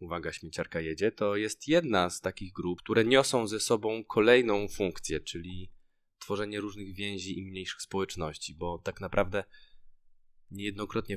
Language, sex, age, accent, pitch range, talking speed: Polish, male, 20-39, native, 85-100 Hz, 140 wpm